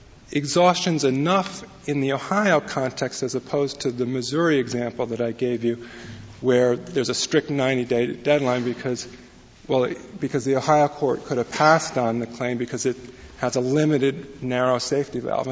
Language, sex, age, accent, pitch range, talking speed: English, male, 40-59, American, 125-145 Hz, 165 wpm